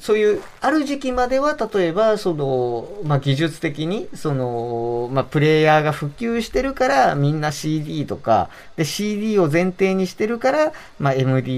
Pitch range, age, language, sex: 120-190 Hz, 40-59, Japanese, male